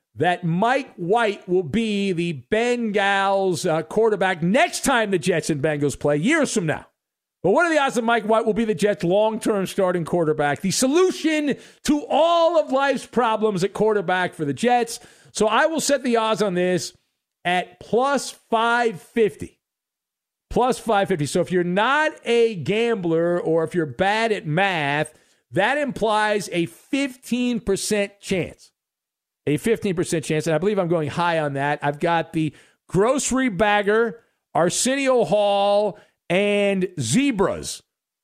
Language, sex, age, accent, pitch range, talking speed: English, male, 50-69, American, 160-230 Hz, 150 wpm